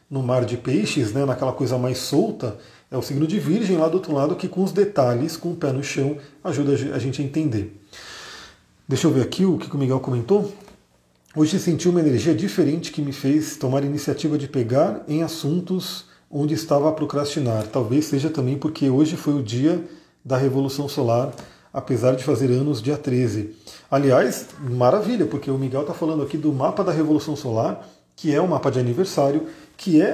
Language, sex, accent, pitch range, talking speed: Portuguese, male, Brazilian, 135-180 Hz, 195 wpm